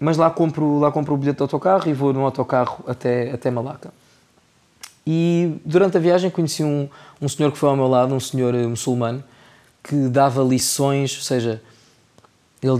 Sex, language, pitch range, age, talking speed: male, Portuguese, 130-160 Hz, 20-39, 175 wpm